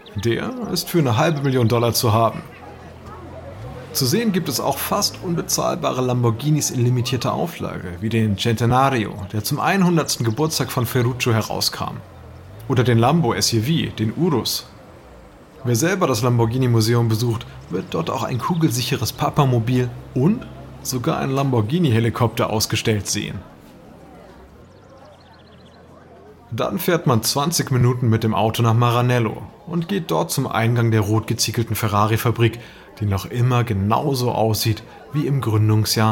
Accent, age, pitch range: German, 30-49, 110-140 Hz